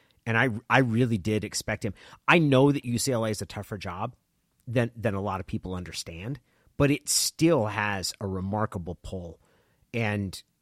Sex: male